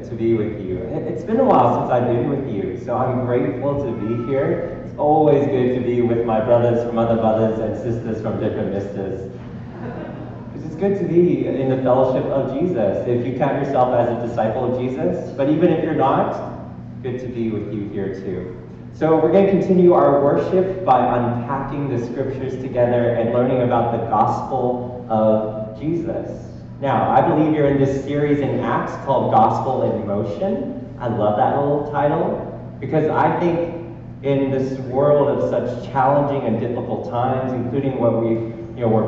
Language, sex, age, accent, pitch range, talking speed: English, male, 30-49, American, 115-140 Hz, 185 wpm